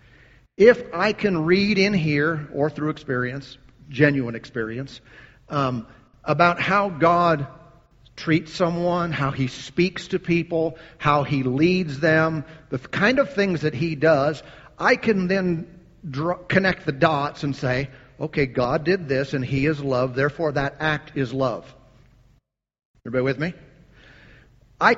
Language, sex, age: English, male, 50-69